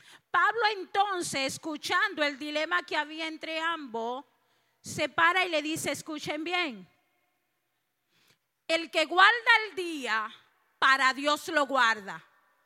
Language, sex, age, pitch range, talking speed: Spanish, female, 40-59, 270-350 Hz, 120 wpm